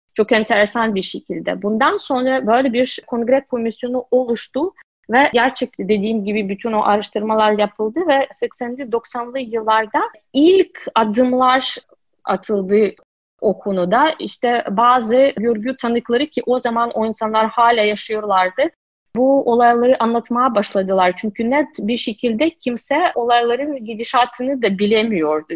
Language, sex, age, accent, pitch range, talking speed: Turkish, female, 30-49, native, 215-255 Hz, 120 wpm